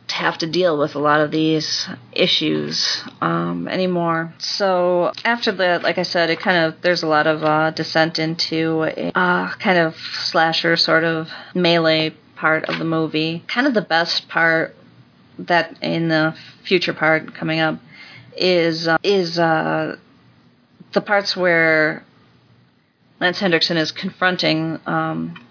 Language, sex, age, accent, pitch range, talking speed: English, female, 40-59, American, 155-180 Hz, 150 wpm